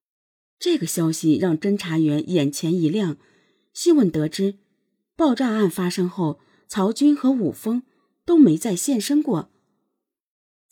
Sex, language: female, Chinese